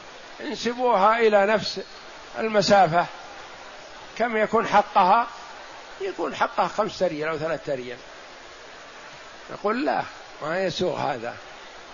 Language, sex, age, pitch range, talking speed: Arabic, male, 50-69, 185-215 Hz, 95 wpm